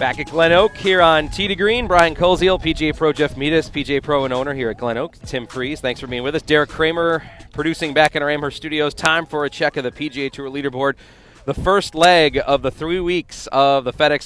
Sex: male